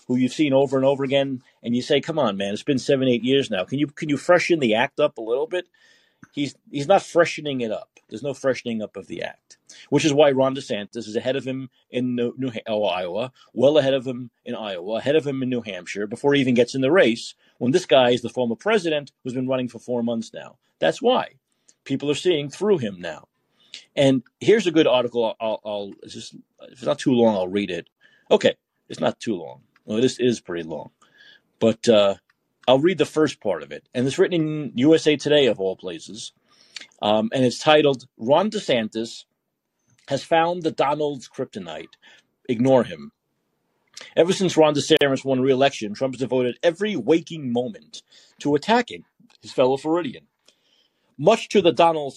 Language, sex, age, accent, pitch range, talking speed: English, male, 40-59, American, 120-155 Hz, 200 wpm